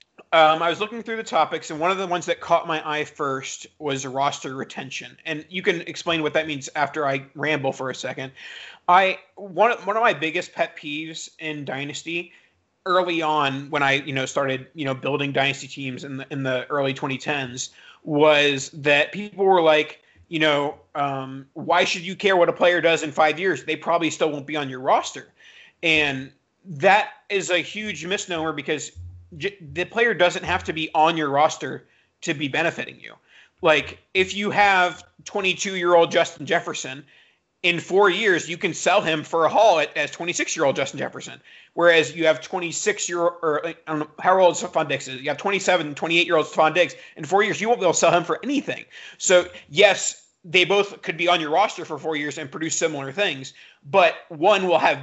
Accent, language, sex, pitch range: American, English, male, 145-180 Hz